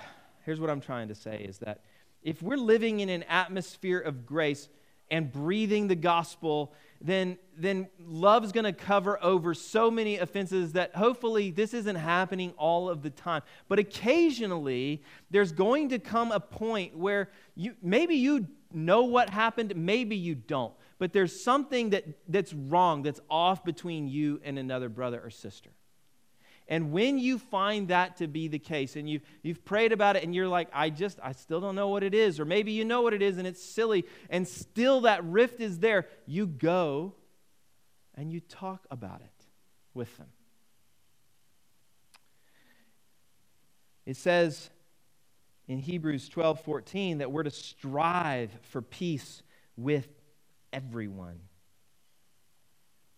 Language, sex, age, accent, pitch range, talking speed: English, male, 30-49, American, 150-200 Hz, 155 wpm